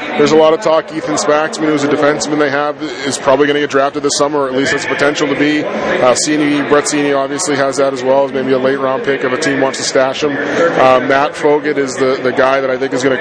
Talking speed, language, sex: 275 wpm, English, male